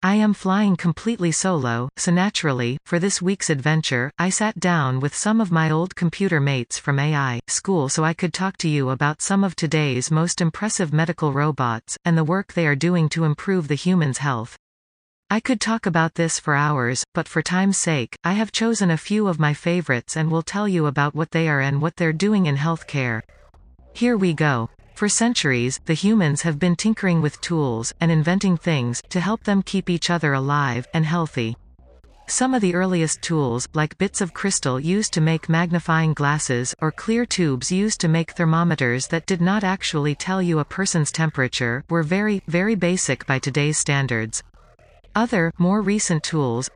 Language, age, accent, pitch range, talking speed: English, 40-59, American, 145-185 Hz, 190 wpm